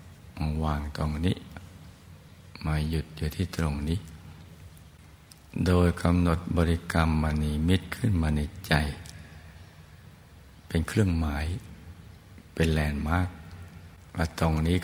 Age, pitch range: 60-79, 80-90 Hz